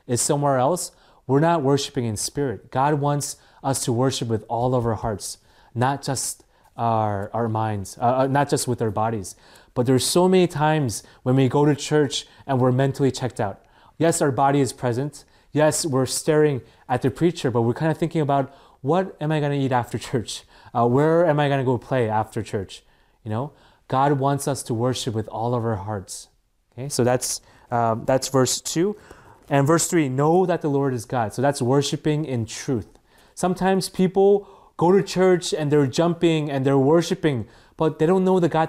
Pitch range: 125-160 Hz